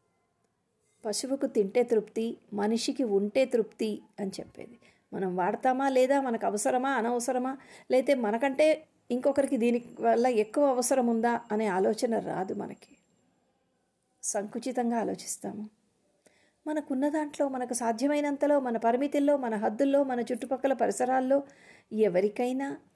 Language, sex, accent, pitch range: Telugu, female, native, 210-275 Hz